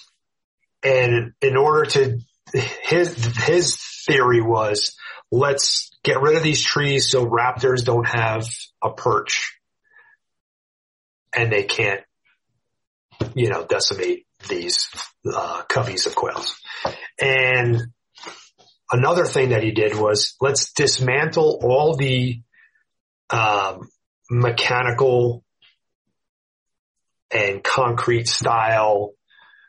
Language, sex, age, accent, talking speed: English, male, 40-59, American, 95 wpm